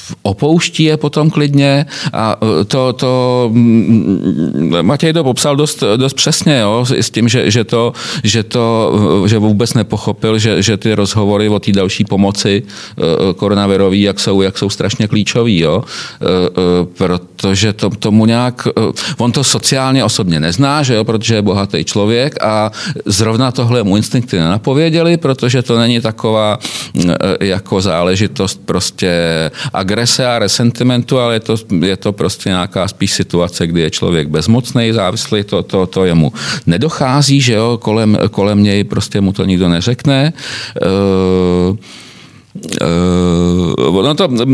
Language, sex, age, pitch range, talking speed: Czech, male, 40-59, 95-125 Hz, 140 wpm